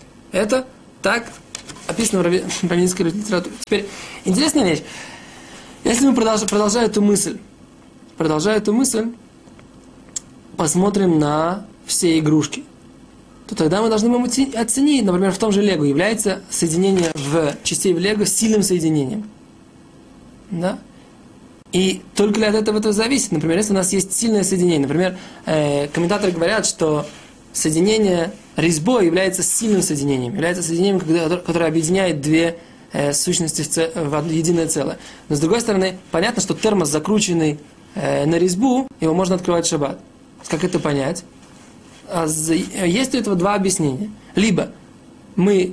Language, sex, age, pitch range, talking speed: Russian, male, 20-39, 165-210 Hz, 125 wpm